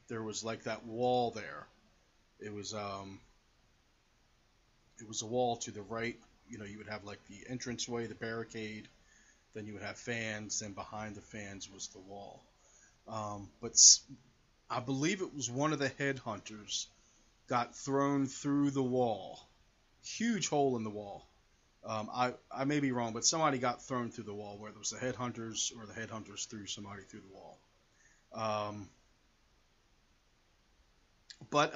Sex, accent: male, American